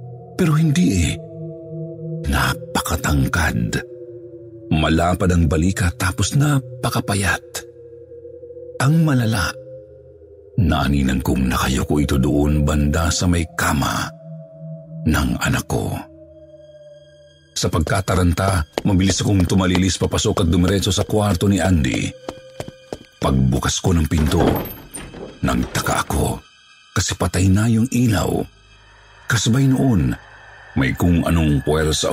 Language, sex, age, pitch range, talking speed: Filipino, male, 50-69, 85-125 Hz, 100 wpm